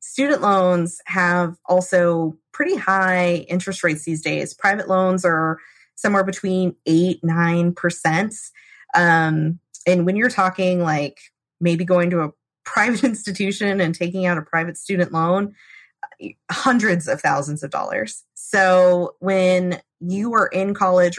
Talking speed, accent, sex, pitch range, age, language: 135 wpm, American, female, 165-185 Hz, 20-39, English